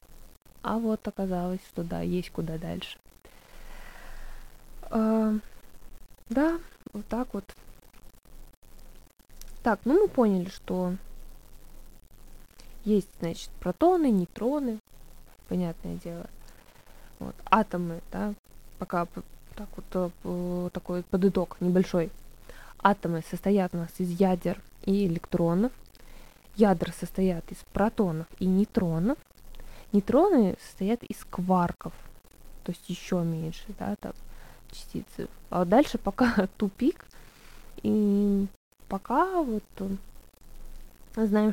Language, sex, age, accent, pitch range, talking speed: Russian, female, 20-39, native, 180-215 Hz, 90 wpm